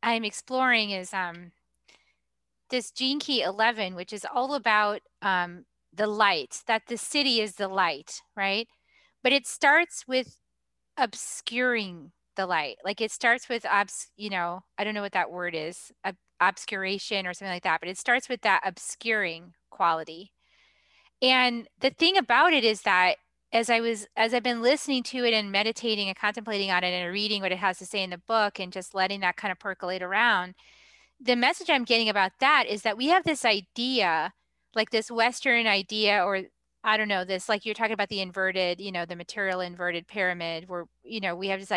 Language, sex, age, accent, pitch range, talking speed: English, female, 20-39, American, 190-235 Hz, 190 wpm